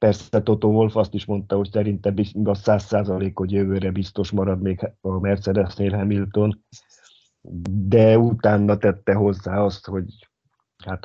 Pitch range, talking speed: 95-105 Hz, 140 wpm